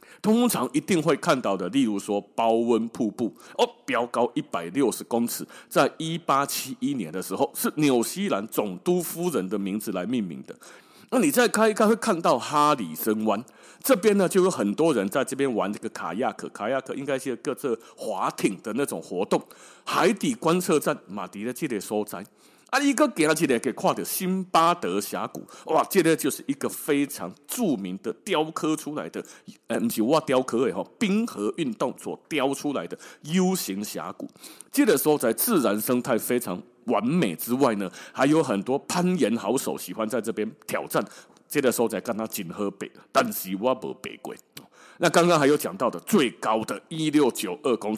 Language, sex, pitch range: Chinese, male, 115-190 Hz